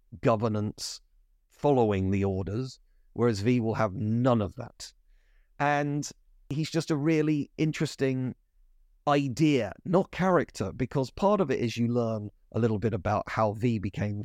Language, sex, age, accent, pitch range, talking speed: English, male, 40-59, British, 115-155 Hz, 145 wpm